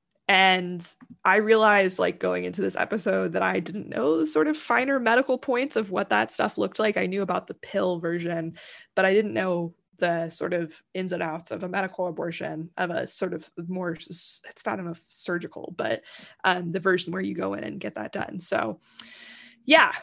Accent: American